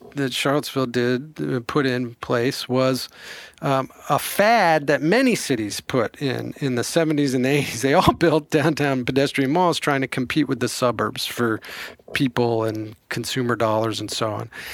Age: 40-59